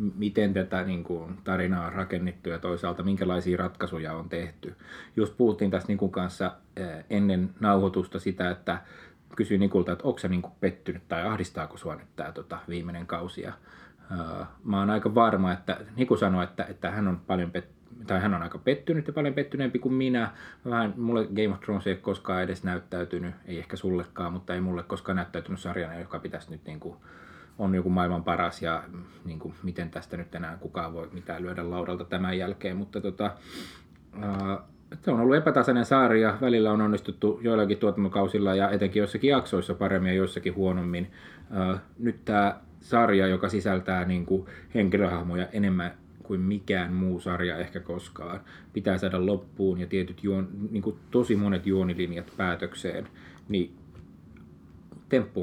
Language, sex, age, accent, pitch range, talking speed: Finnish, male, 30-49, native, 90-100 Hz, 165 wpm